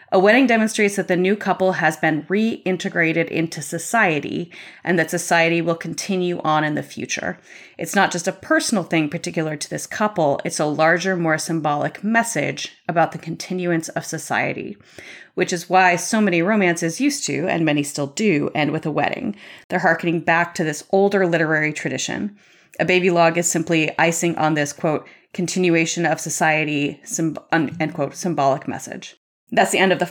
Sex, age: female, 30-49